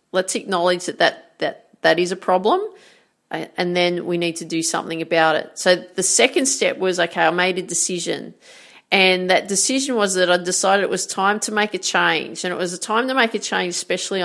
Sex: female